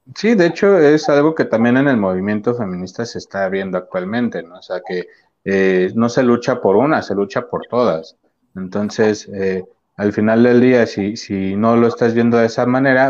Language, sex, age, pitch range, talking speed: Spanish, male, 30-49, 105-125 Hz, 200 wpm